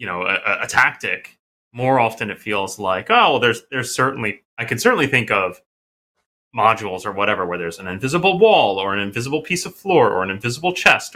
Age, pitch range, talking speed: 30-49, 100-140 Hz, 205 wpm